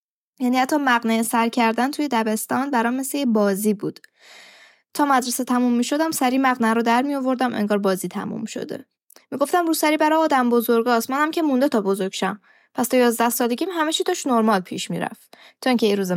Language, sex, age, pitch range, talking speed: Persian, female, 10-29, 225-315 Hz, 190 wpm